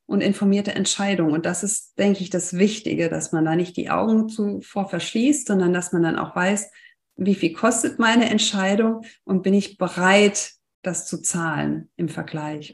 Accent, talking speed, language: German, 180 wpm, German